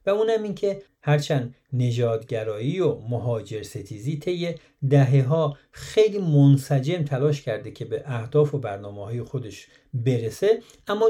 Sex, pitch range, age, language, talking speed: male, 125-165 Hz, 50-69, Persian, 130 wpm